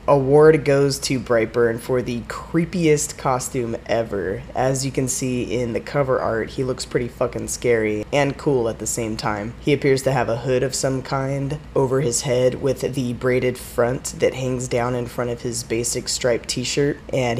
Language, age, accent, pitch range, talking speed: English, 20-39, American, 120-140 Hz, 190 wpm